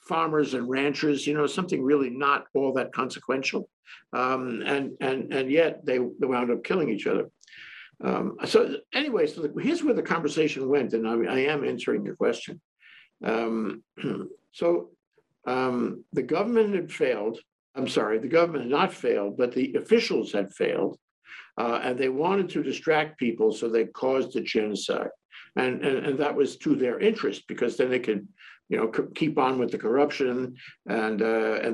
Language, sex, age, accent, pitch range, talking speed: English, male, 60-79, American, 125-185 Hz, 175 wpm